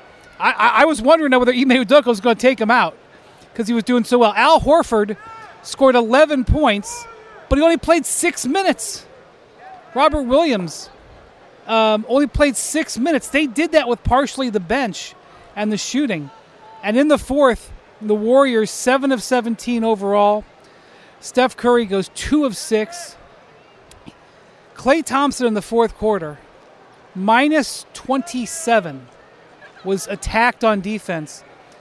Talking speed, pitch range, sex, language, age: 140 wpm, 190-255 Hz, male, English, 40-59